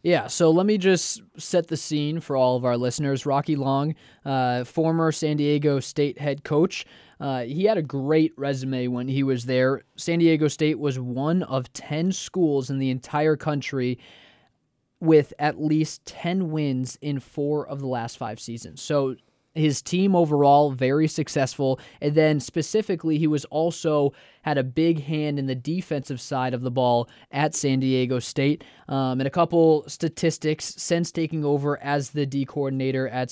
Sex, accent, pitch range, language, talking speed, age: male, American, 130-155 Hz, English, 175 wpm, 20-39